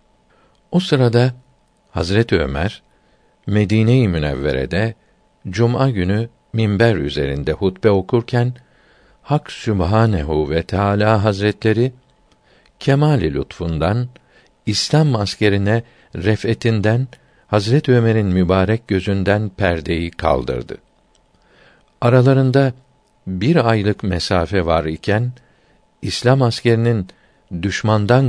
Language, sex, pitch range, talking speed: Turkish, male, 90-115 Hz, 80 wpm